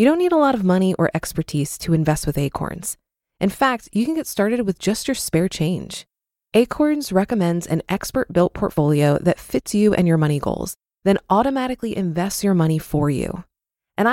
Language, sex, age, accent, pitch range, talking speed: English, female, 20-39, American, 165-230 Hz, 185 wpm